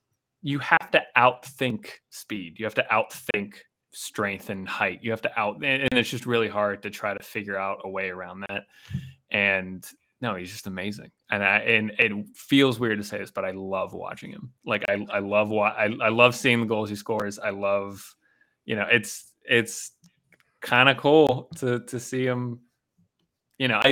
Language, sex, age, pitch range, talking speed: English, male, 20-39, 95-125 Hz, 195 wpm